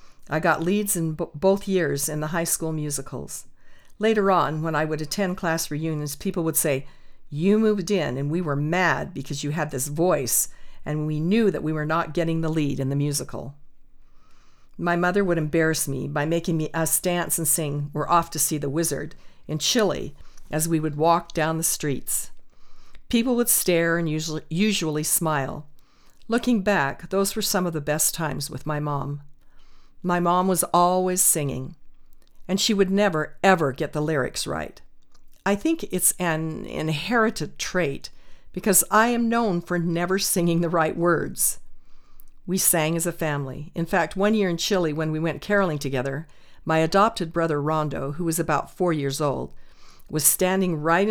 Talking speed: 175 wpm